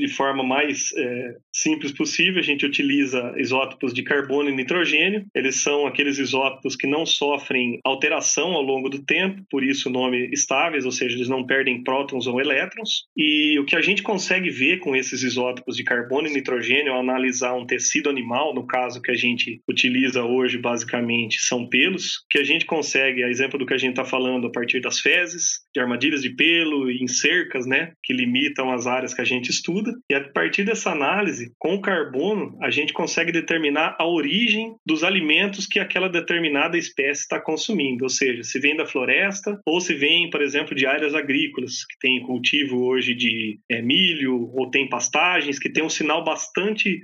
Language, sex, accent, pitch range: Portuguese, male, Brazilian, 130-170 Hz